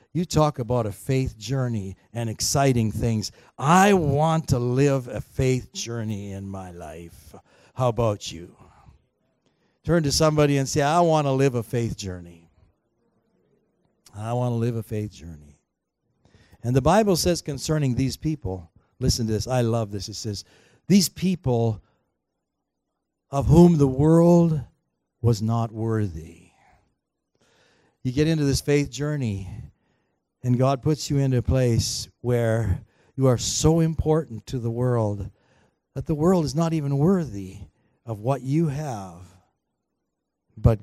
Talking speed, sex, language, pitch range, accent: 145 wpm, male, English, 110-140 Hz, American